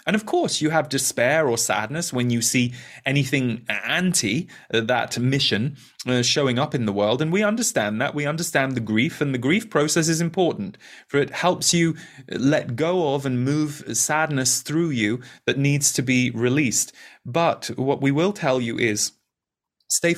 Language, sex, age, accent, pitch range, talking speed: English, male, 20-39, British, 120-160 Hz, 175 wpm